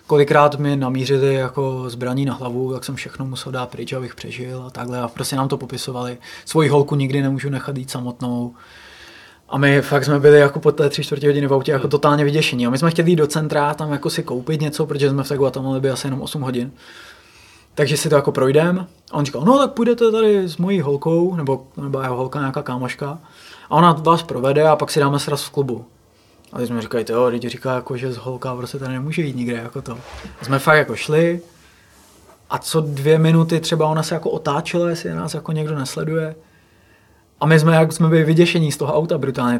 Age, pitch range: 20-39, 125-155 Hz